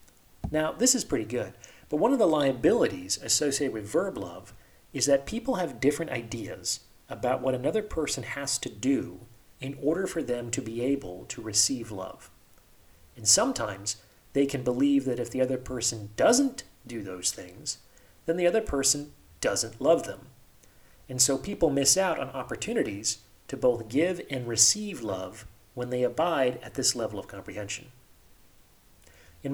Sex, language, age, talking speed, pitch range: male, English, 40-59, 160 wpm, 110-155 Hz